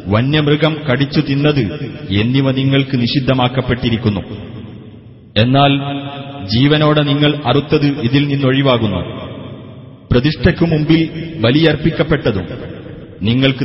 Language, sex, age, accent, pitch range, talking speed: Malayalam, male, 30-49, native, 125-145 Hz, 70 wpm